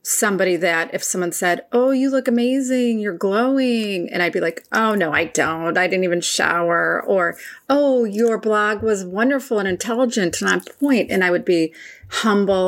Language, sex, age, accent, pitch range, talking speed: English, female, 30-49, American, 180-235 Hz, 185 wpm